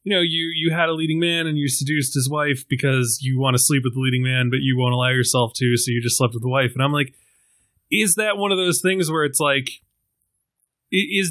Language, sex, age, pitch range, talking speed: English, male, 20-39, 130-175 Hz, 255 wpm